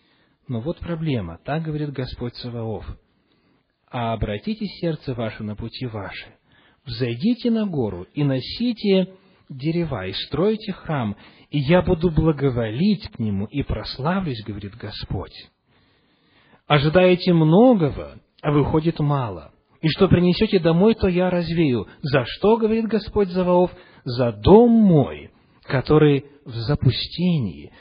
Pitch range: 120-190 Hz